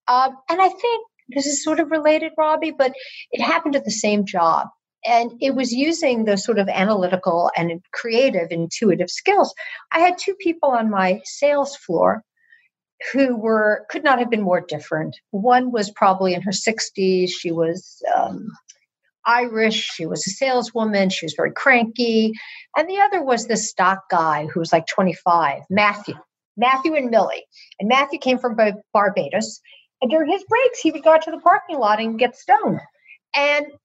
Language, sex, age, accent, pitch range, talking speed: English, female, 50-69, American, 190-280 Hz, 175 wpm